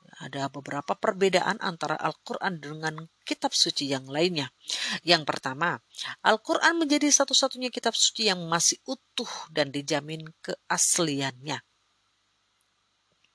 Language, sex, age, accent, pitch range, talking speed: Indonesian, female, 40-59, native, 145-215 Hz, 105 wpm